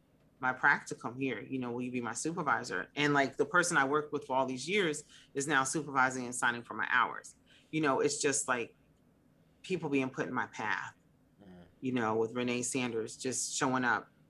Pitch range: 120-145 Hz